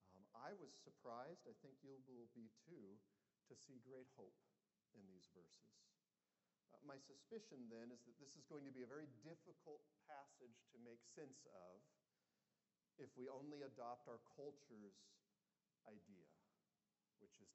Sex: male